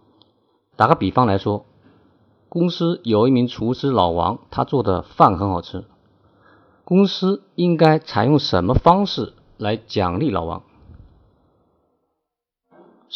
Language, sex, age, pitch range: Chinese, male, 50-69, 100-140 Hz